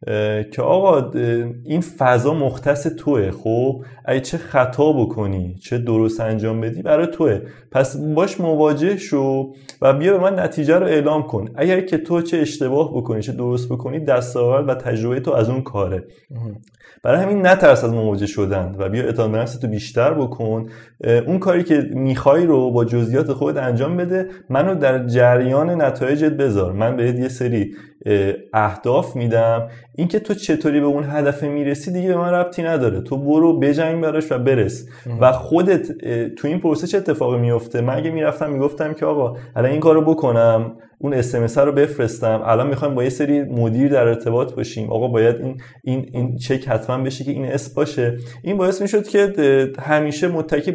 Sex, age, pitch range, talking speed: male, 30-49, 120-150 Hz, 165 wpm